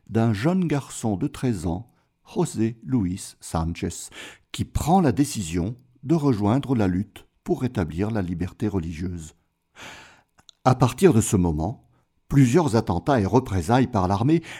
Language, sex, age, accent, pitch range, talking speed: French, male, 60-79, French, 100-145 Hz, 135 wpm